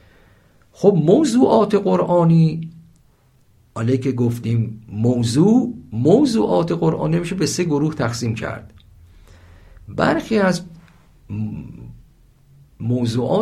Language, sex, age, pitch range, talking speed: Persian, male, 50-69, 105-160 Hz, 80 wpm